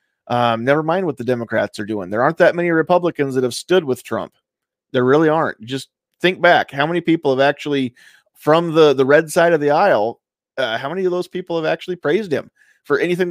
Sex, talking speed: male, 220 wpm